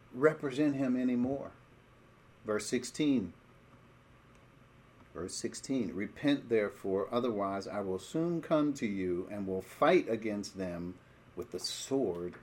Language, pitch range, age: English, 105-135 Hz, 50-69